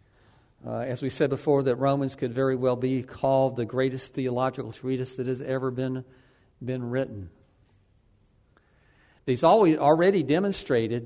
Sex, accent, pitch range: male, American, 115-135 Hz